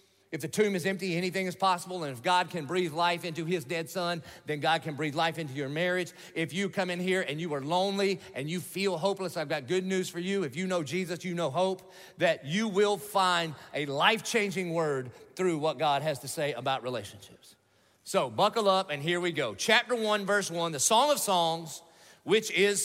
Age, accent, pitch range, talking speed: 40-59, American, 165-215 Hz, 220 wpm